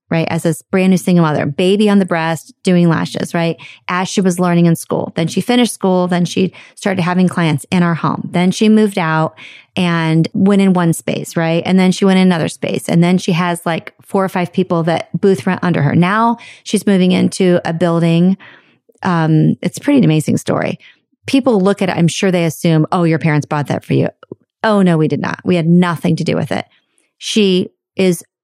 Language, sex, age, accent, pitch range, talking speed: English, female, 30-49, American, 170-200 Hz, 215 wpm